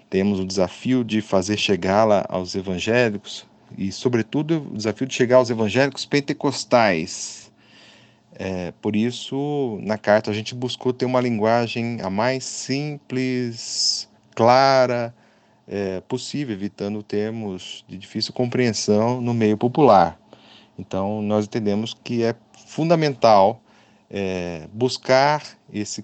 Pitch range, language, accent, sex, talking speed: 105-130 Hz, Portuguese, Brazilian, male, 115 wpm